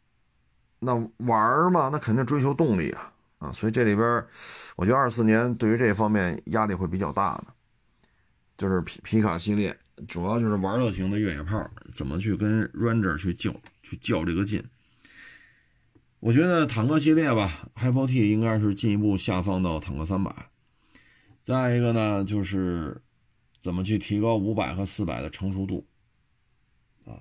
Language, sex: Chinese, male